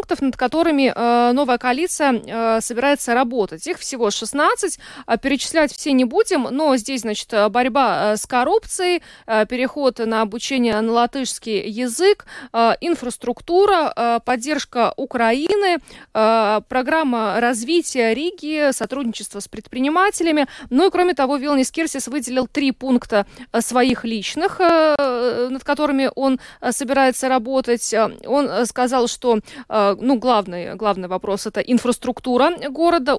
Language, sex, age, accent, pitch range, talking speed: Russian, female, 20-39, native, 225-275 Hz, 130 wpm